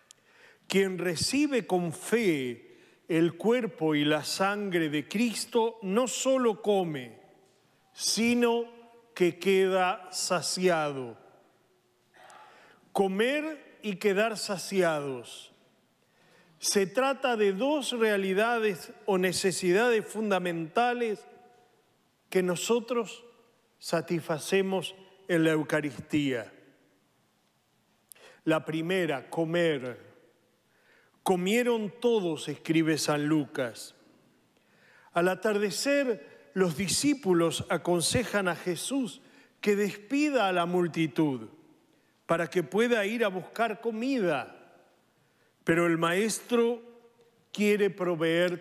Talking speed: 85 wpm